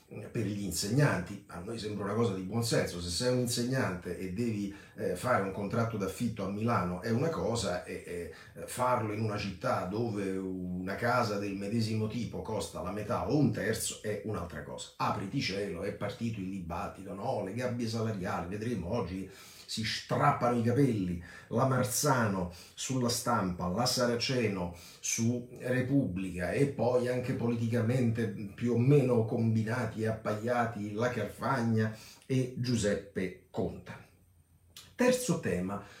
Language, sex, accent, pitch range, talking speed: Italian, male, native, 95-125 Hz, 145 wpm